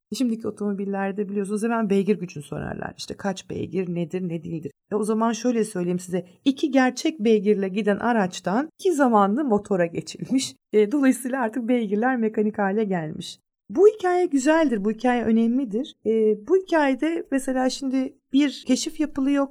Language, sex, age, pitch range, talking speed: Turkish, female, 40-59, 185-260 Hz, 150 wpm